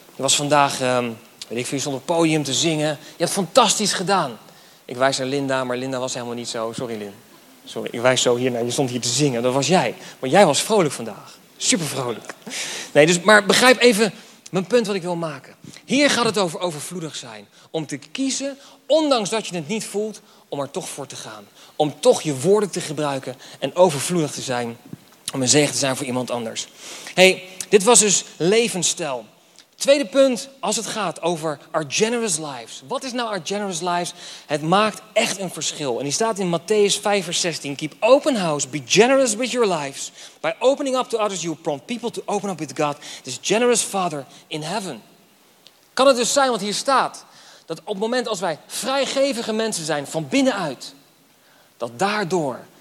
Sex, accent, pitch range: male, Dutch, 145-215 Hz